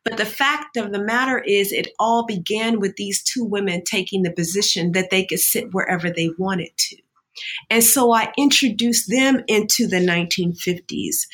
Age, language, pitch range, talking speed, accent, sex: 40-59, English, 190-240 Hz, 175 wpm, American, female